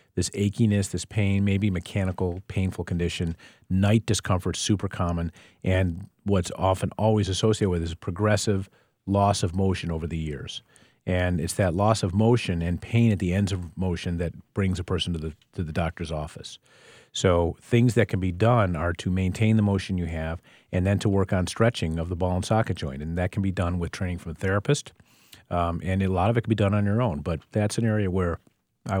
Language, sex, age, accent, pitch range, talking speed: English, male, 40-59, American, 85-100 Hz, 210 wpm